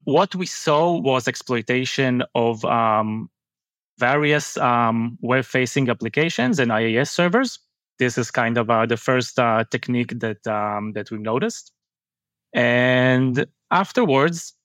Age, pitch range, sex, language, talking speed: 20-39, 120-145 Hz, male, English, 135 wpm